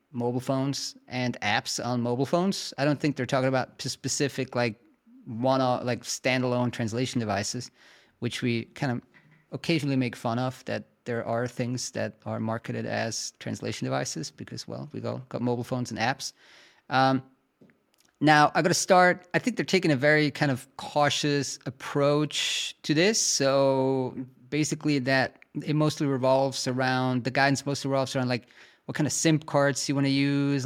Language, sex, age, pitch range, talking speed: English, male, 30-49, 130-155 Hz, 170 wpm